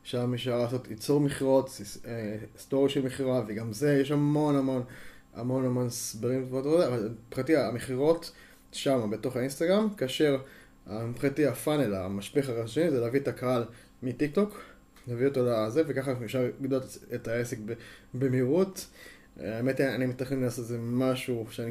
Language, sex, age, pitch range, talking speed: Hebrew, male, 20-39, 115-140 Hz, 140 wpm